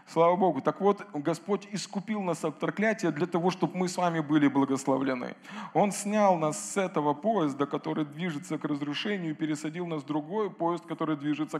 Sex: male